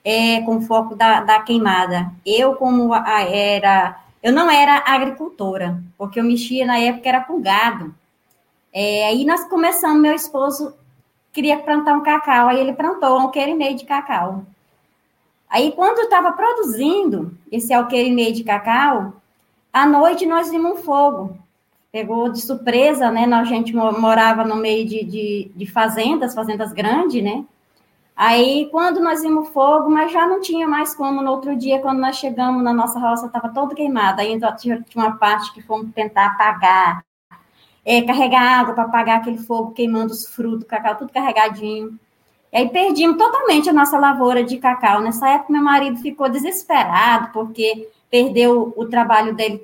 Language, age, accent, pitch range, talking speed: Portuguese, 20-39, Brazilian, 215-275 Hz, 170 wpm